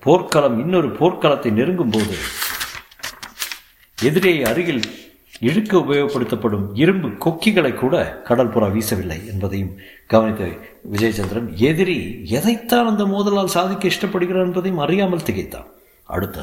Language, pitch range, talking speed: Tamil, 100-155 Hz, 100 wpm